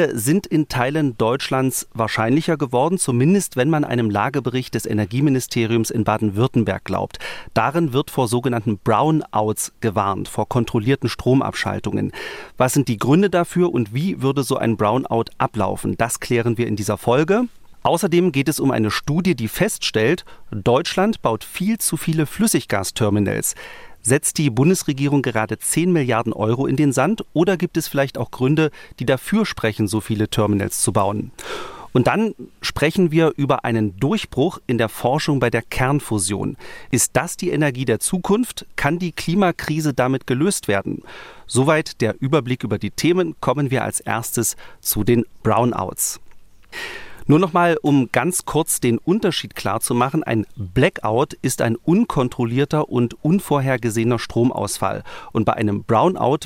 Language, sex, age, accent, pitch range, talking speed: German, male, 40-59, German, 115-155 Hz, 150 wpm